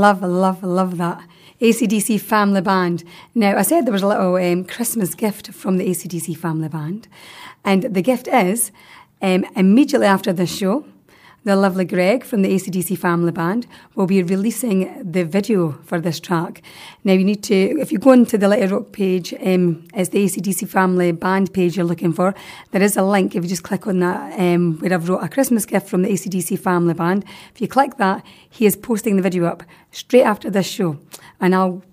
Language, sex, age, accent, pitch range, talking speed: English, female, 30-49, British, 180-210 Hz, 200 wpm